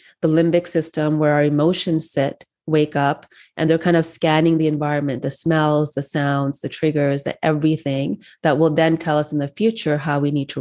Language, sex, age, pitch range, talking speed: English, female, 20-39, 145-165 Hz, 205 wpm